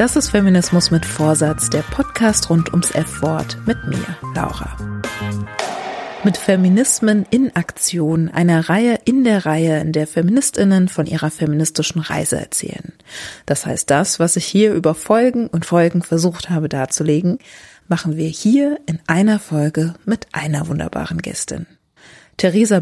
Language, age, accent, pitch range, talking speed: German, 30-49, German, 165-200 Hz, 140 wpm